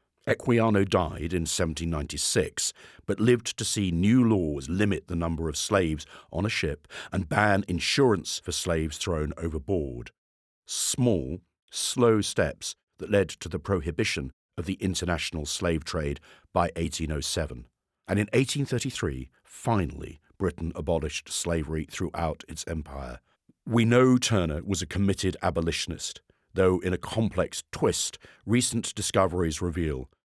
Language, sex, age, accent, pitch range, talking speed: English, male, 50-69, British, 80-100 Hz, 130 wpm